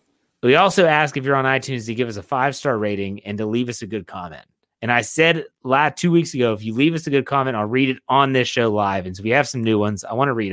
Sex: male